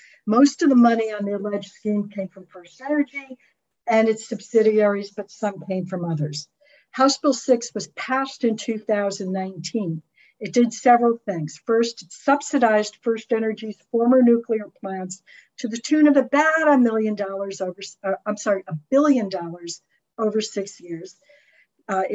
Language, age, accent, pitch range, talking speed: English, 60-79, American, 195-245 Hz, 155 wpm